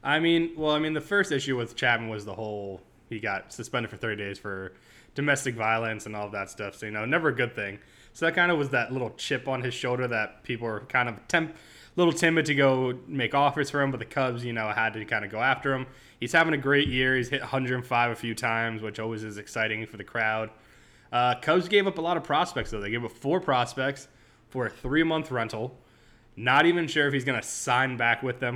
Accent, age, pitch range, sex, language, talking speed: American, 20-39, 115-135 Hz, male, English, 245 wpm